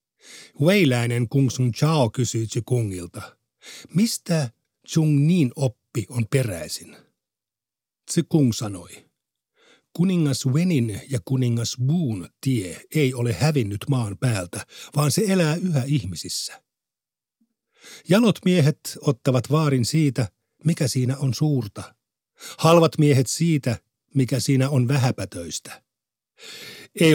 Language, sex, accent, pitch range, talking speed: Finnish, male, native, 115-150 Hz, 105 wpm